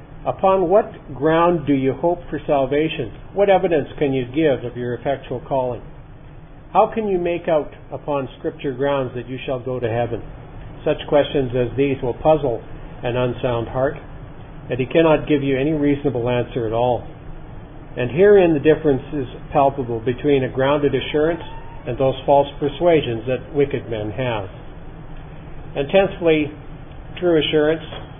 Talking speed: 150 wpm